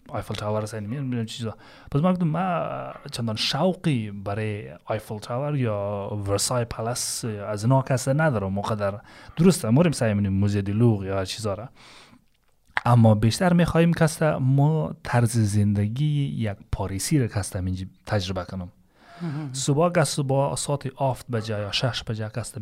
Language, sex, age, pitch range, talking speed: Persian, male, 30-49, 105-135 Hz, 145 wpm